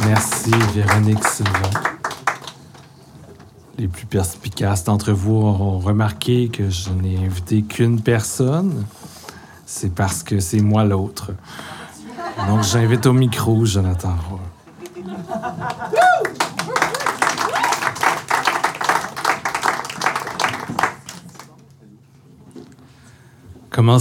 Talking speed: 70 wpm